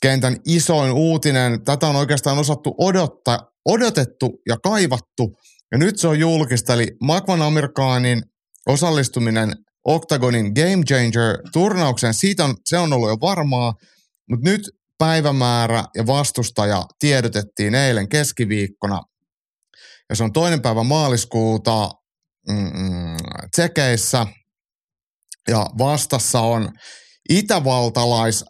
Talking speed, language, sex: 105 wpm, Finnish, male